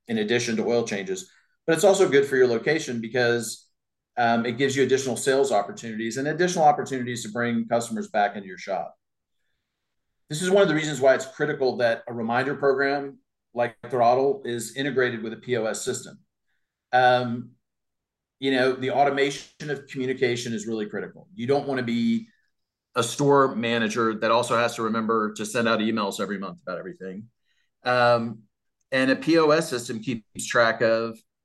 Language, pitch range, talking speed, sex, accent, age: English, 115-135 Hz, 170 wpm, male, American, 40-59